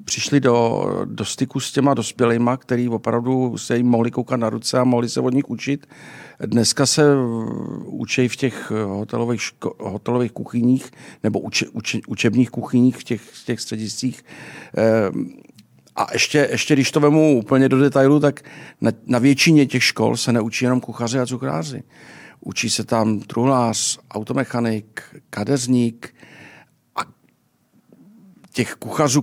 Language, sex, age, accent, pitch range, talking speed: Czech, male, 50-69, native, 115-135 Hz, 140 wpm